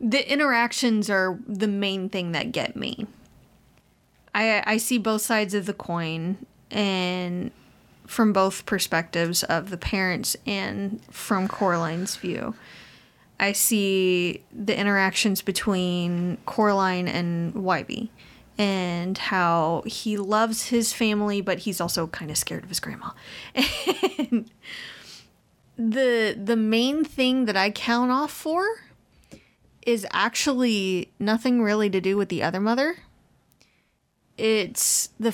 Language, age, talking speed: English, 20-39, 120 wpm